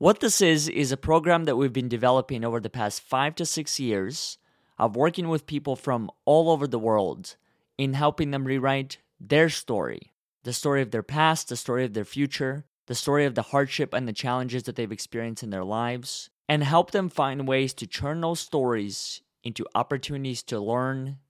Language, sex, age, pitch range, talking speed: English, male, 20-39, 120-155 Hz, 195 wpm